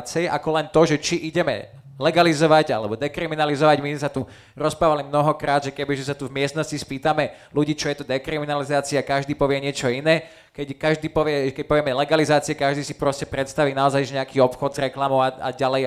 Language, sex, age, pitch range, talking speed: Slovak, male, 20-39, 140-170 Hz, 185 wpm